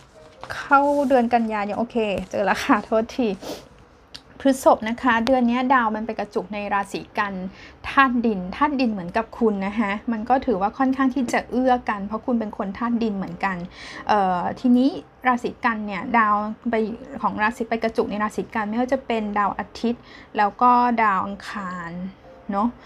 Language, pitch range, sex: Thai, 215-260 Hz, female